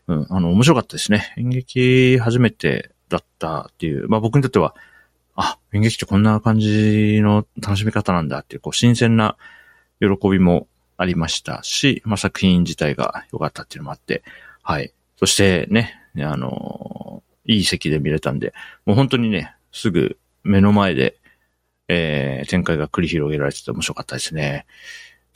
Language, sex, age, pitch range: Japanese, male, 40-59, 75-110 Hz